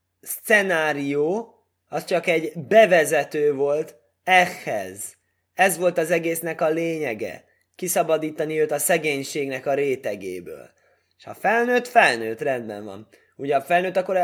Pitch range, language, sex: 115-165 Hz, Hungarian, male